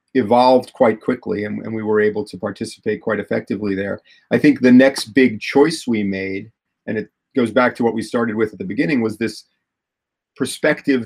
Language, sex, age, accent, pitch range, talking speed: English, male, 40-59, American, 105-120 Hz, 195 wpm